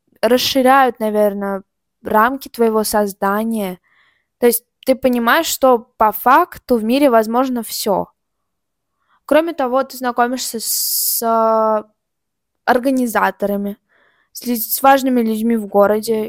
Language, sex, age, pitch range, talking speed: Russian, female, 20-39, 220-260 Hz, 105 wpm